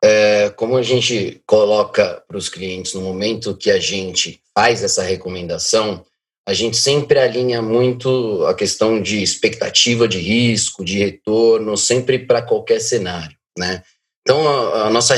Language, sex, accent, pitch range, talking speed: Portuguese, male, Brazilian, 95-130 Hz, 150 wpm